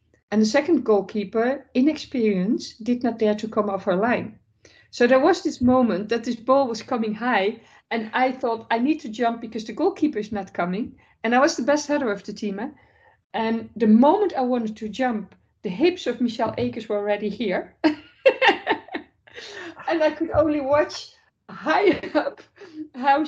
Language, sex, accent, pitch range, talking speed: English, female, Dutch, 210-265 Hz, 180 wpm